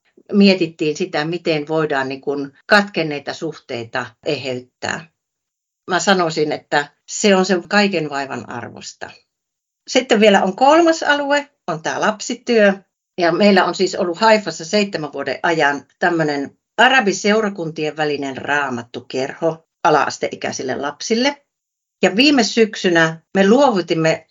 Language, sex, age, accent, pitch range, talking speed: Finnish, female, 60-79, native, 150-205 Hz, 110 wpm